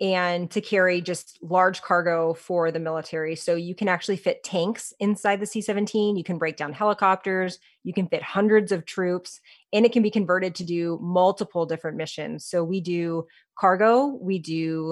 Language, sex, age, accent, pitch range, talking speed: English, female, 30-49, American, 170-195 Hz, 180 wpm